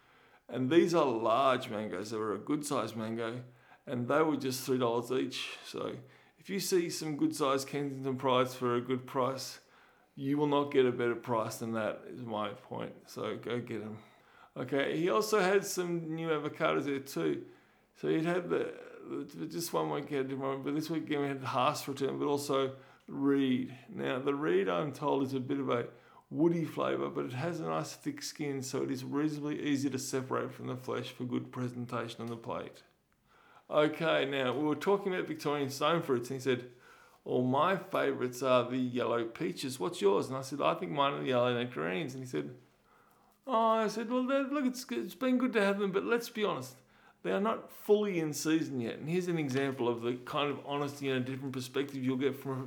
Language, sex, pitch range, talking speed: English, male, 125-165 Hz, 210 wpm